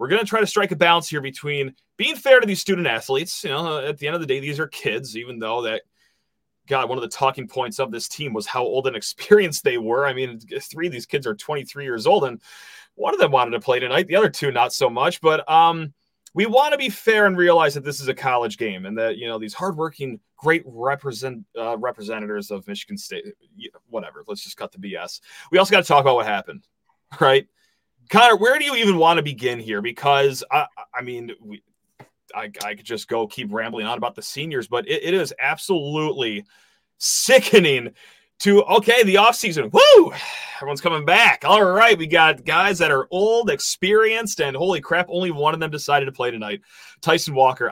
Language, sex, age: English, male, 30-49